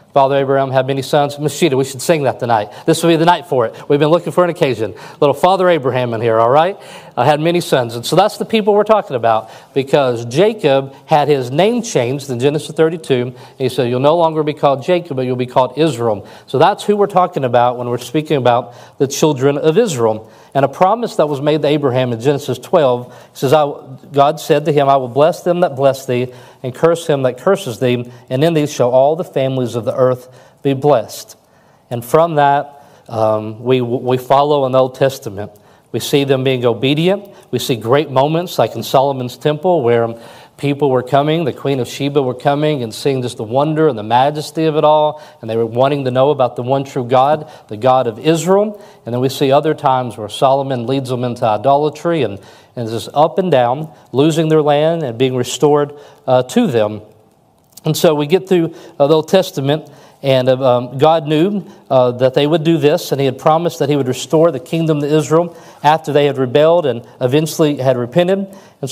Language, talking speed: English, 220 wpm